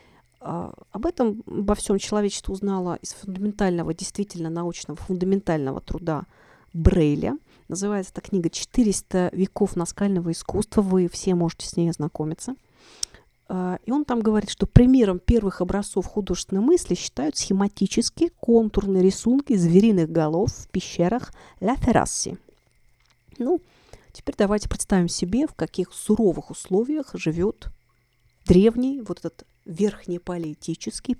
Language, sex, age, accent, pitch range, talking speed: Russian, female, 40-59, native, 175-210 Hz, 115 wpm